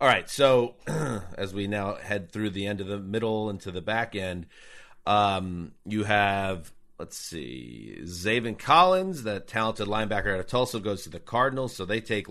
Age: 30-49